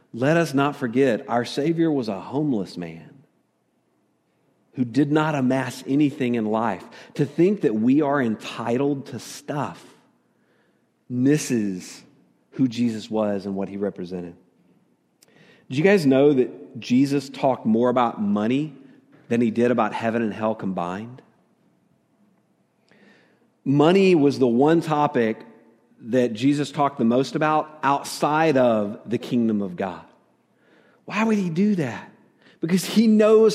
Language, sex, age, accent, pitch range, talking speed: English, male, 40-59, American, 125-180 Hz, 135 wpm